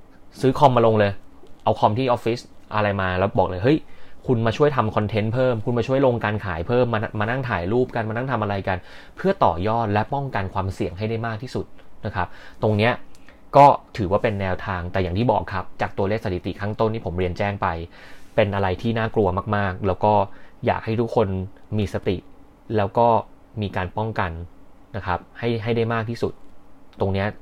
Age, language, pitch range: 20-39, Thai, 95-115 Hz